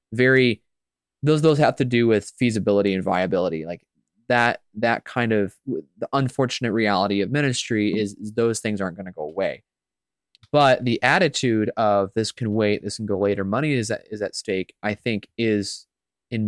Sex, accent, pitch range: male, American, 100-130 Hz